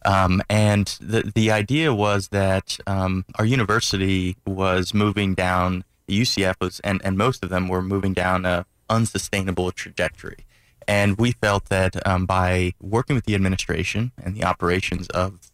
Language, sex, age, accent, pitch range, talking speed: English, male, 20-39, American, 90-100 Hz, 155 wpm